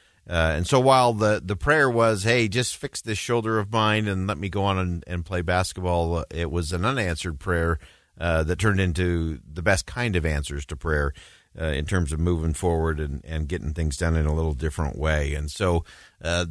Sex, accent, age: male, American, 50-69